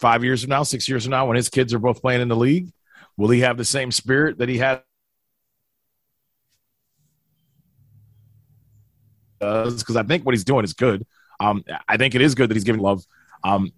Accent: American